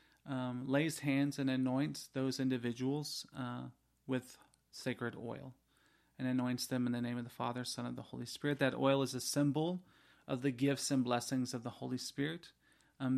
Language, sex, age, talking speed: English, male, 30-49, 180 wpm